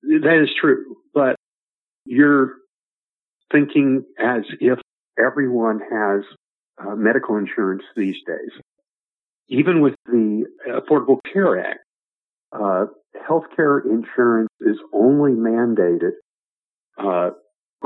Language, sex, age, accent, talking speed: English, male, 50-69, American, 95 wpm